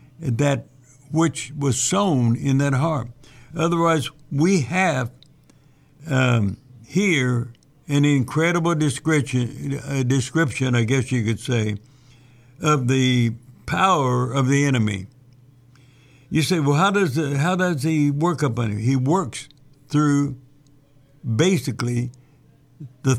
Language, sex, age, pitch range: English, male, 60-79, 125-150 Hz